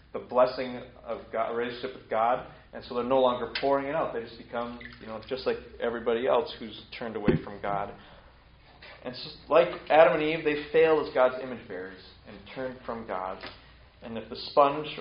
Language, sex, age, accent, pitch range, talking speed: English, male, 30-49, American, 120-155 Hz, 200 wpm